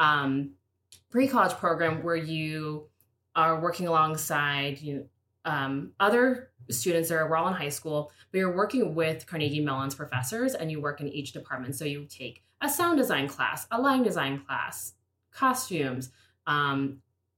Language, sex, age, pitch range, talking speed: English, female, 20-39, 135-175 Hz, 150 wpm